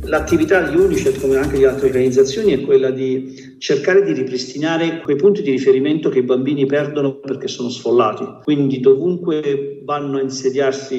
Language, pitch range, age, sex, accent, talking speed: Italian, 130-180 Hz, 50-69, male, native, 165 wpm